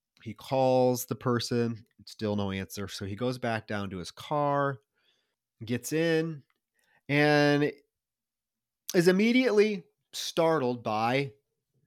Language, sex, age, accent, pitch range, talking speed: English, male, 30-49, American, 110-145 Hz, 110 wpm